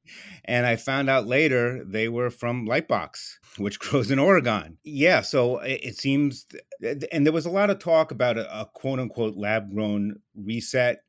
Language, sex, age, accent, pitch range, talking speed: English, male, 30-49, American, 105-125 Hz, 190 wpm